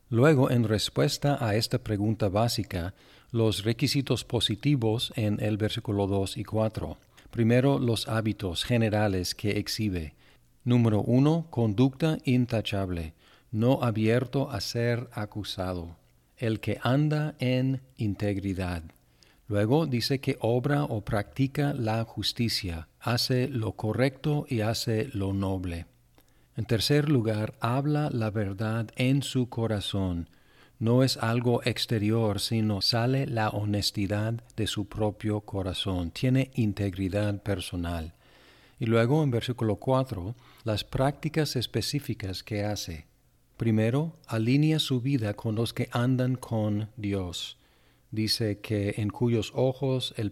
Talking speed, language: 120 wpm, Spanish